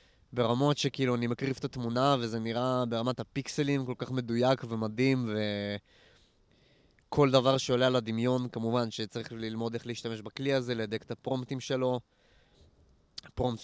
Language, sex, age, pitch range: Hebrew, male, 20-39, 110-135 Hz